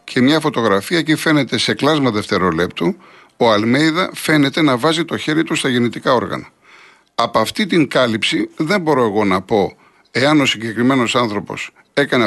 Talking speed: 160 wpm